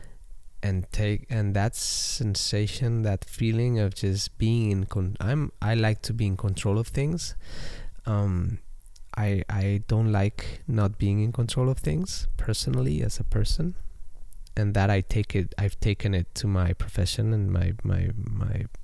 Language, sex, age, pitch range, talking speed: English, male, 20-39, 95-115 Hz, 160 wpm